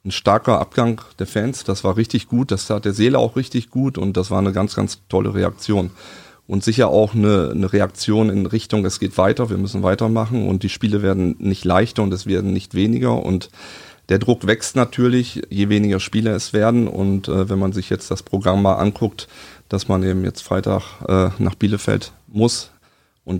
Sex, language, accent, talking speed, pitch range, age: male, German, German, 205 wpm, 95-110 Hz, 30-49